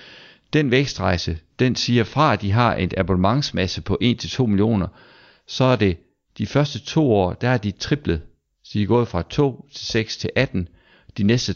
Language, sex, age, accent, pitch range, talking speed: English, male, 60-79, Danish, 90-120 Hz, 195 wpm